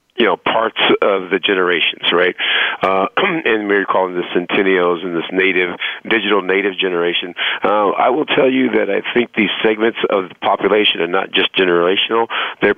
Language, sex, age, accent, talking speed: English, male, 50-69, American, 175 wpm